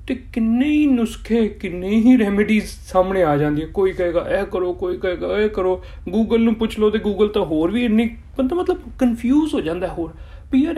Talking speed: 195 wpm